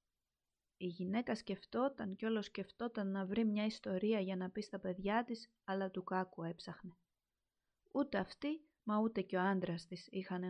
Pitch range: 185-230 Hz